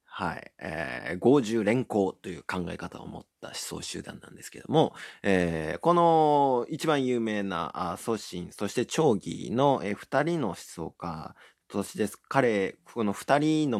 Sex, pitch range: male, 90-125 Hz